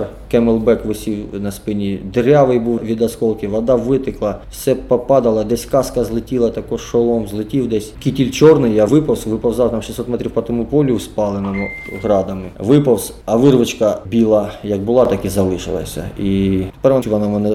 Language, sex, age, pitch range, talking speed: Ukrainian, male, 20-39, 100-120 Hz, 155 wpm